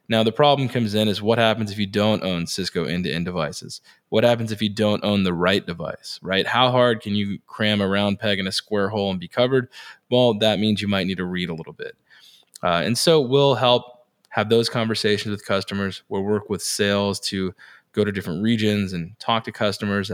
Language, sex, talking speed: English, male, 220 wpm